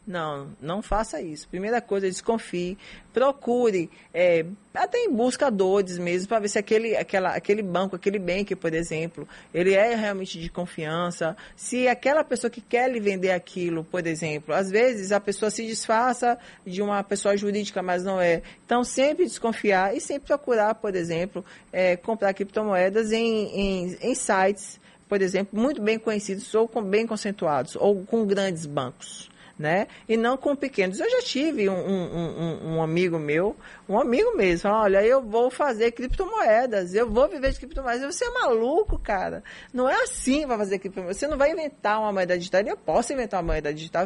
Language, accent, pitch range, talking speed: Portuguese, Brazilian, 180-240 Hz, 180 wpm